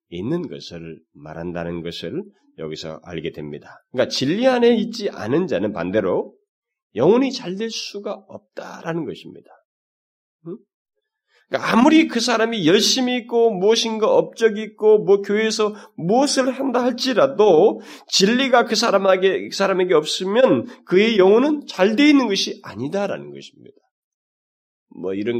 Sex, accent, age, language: male, native, 30-49, Korean